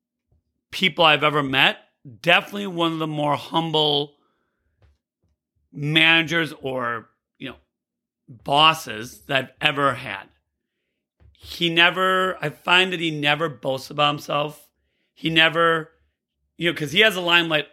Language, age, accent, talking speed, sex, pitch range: English, 40-59, American, 130 wpm, male, 150-190 Hz